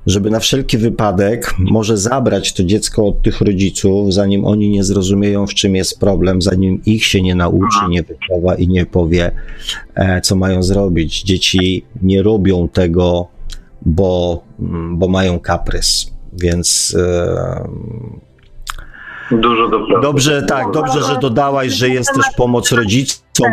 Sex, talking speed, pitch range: male, 140 wpm, 90-110 Hz